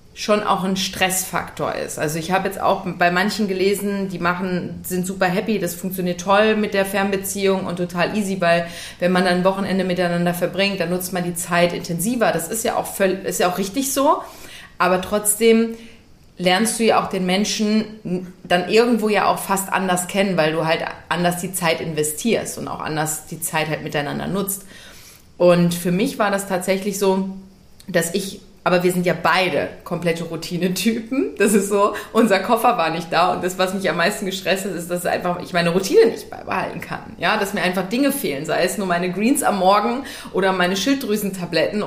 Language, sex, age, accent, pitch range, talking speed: German, female, 30-49, German, 175-205 Hz, 200 wpm